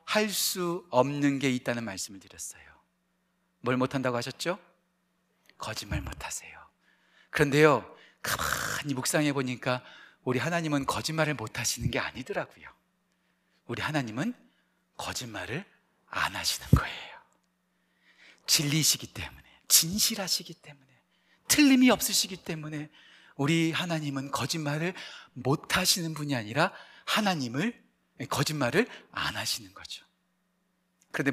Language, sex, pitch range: Korean, male, 130-180 Hz